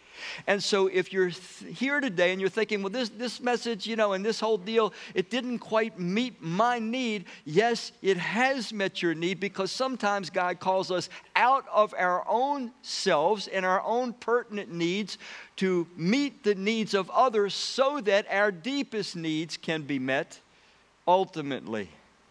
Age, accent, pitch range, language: 50-69, American, 170-225 Hz, English